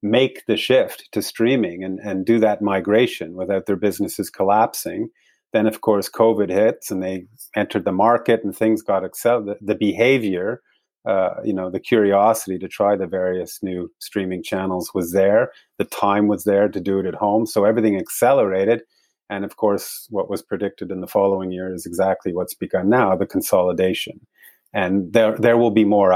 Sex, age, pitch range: male, 30-49, 95-105 Hz